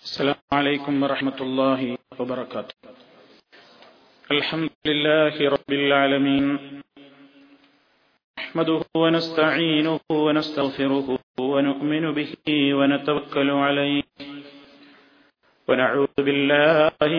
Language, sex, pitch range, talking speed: Malayalam, male, 140-160 Hz, 65 wpm